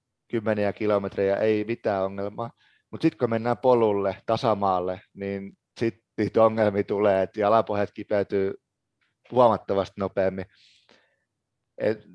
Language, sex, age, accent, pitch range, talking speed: Finnish, male, 30-49, native, 100-120 Hz, 110 wpm